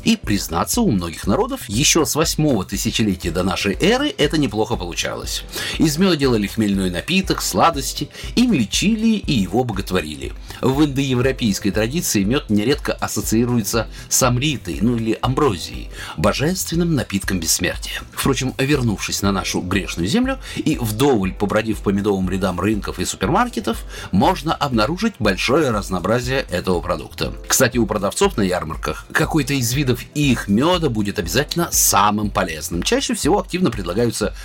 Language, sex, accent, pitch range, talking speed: Russian, male, native, 100-155 Hz, 140 wpm